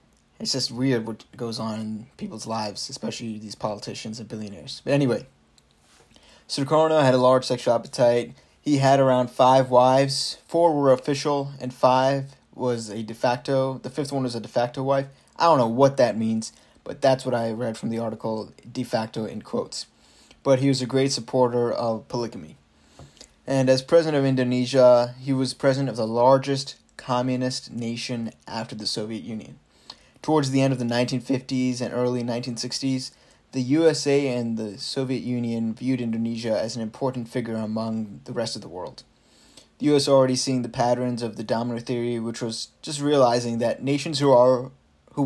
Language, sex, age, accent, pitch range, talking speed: English, male, 20-39, American, 115-135 Hz, 180 wpm